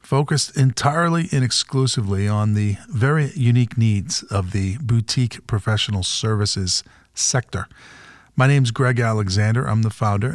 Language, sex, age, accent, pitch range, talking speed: English, male, 50-69, American, 105-125 Hz, 135 wpm